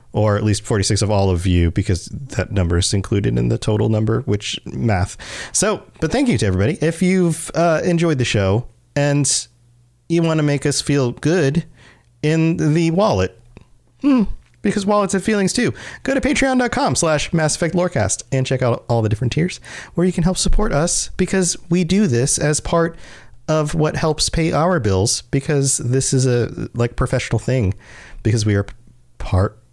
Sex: male